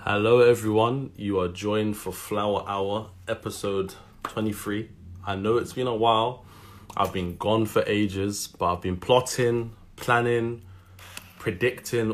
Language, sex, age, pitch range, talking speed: English, male, 20-39, 95-110 Hz, 135 wpm